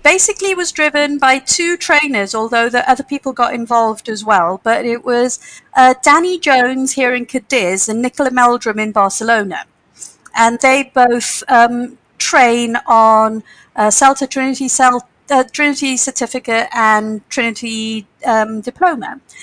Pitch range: 220-275 Hz